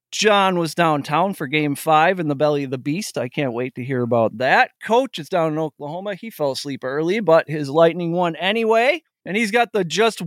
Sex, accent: male, American